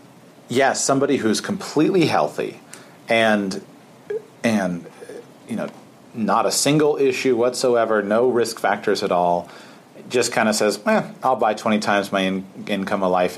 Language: English